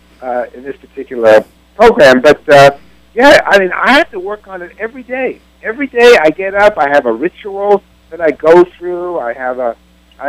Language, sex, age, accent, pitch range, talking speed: English, male, 60-79, American, 145-200 Hz, 205 wpm